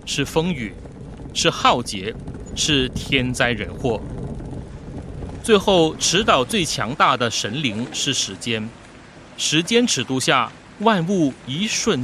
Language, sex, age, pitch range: Chinese, male, 30-49, 110-160 Hz